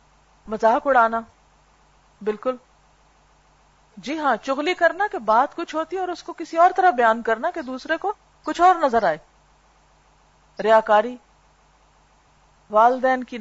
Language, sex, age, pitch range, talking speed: Urdu, female, 40-59, 205-285 Hz, 135 wpm